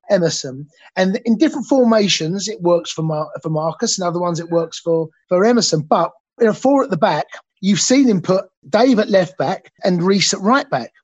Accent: British